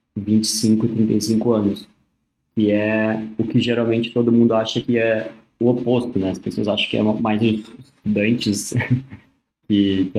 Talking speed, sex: 145 wpm, male